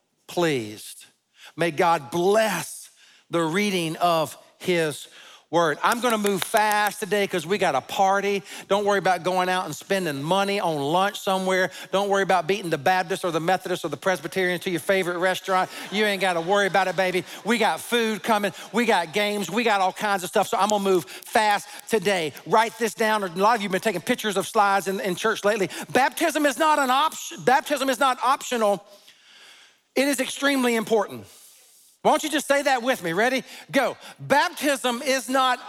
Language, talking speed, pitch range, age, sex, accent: English, 200 wpm, 190-255 Hz, 40-59, male, American